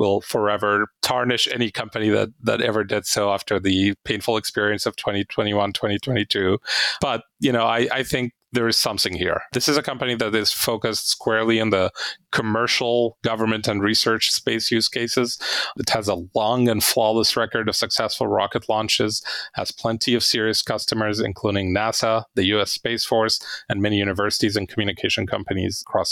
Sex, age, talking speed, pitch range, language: male, 30-49, 170 wpm, 105-125 Hz, English